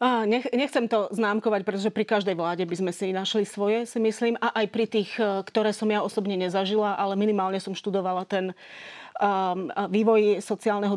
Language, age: Slovak, 30-49